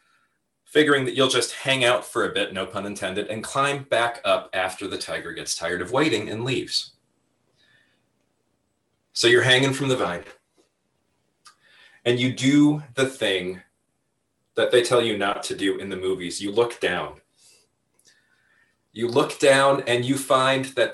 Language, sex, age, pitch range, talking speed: English, male, 30-49, 115-145 Hz, 160 wpm